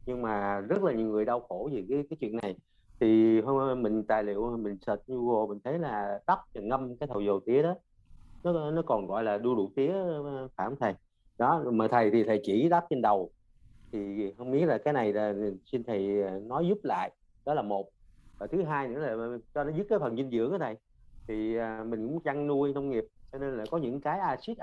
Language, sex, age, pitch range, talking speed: Vietnamese, male, 30-49, 105-145 Hz, 230 wpm